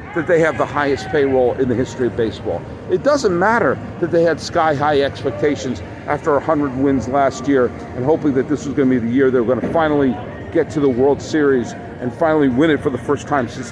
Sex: male